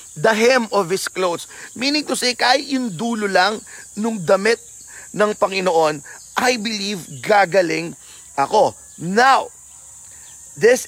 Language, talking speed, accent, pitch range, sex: Filipino, 120 wpm, native, 170-225 Hz, male